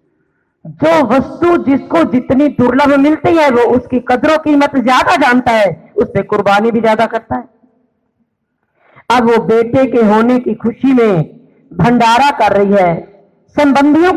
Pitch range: 215-285 Hz